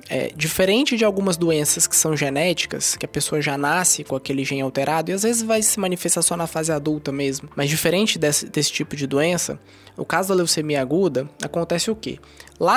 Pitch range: 160-210 Hz